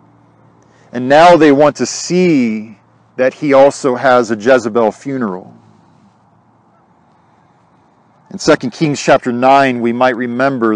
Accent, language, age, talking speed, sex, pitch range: American, English, 40-59, 115 wpm, male, 115-145 Hz